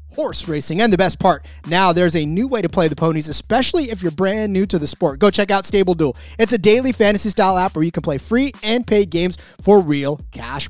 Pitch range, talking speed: 165-225 Hz, 250 wpm